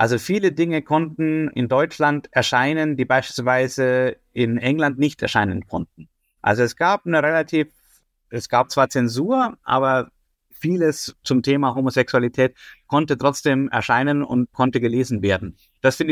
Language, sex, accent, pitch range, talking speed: German, male, German, 120-145 Hz, 140 wpm